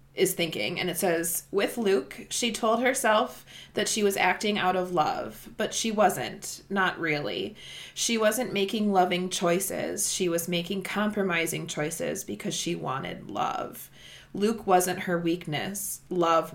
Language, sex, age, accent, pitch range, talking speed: English, female, 20-39, American, 165-200 Hz, 150 wpm